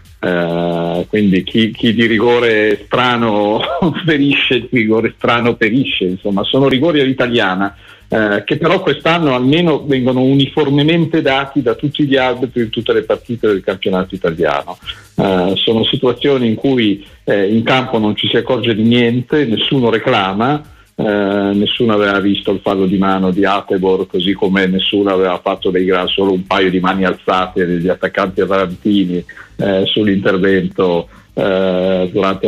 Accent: native